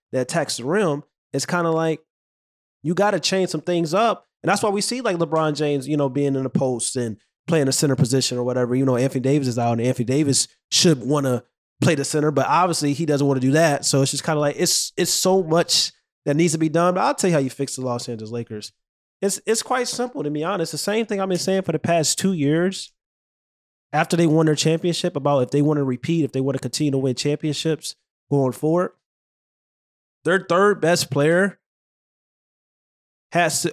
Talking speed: 230 wpm